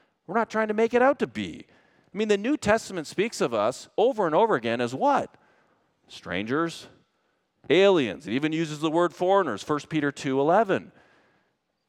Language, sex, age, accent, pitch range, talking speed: English, male, 40-59, American, 130-200 Hz, 170 wpm